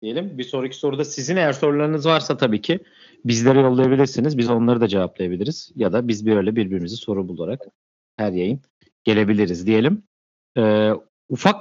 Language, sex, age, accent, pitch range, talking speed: Turkish, male, 40-59, native, 100-140 Hz, 155 wpm